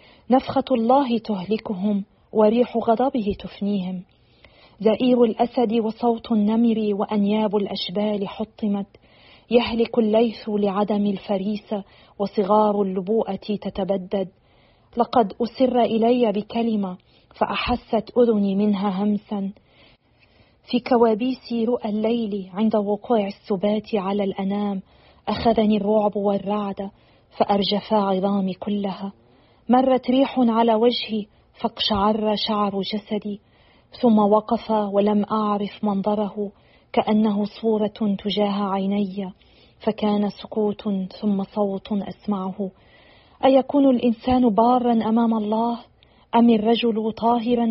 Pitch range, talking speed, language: 205-230 Hz, 90 wpm, Arabic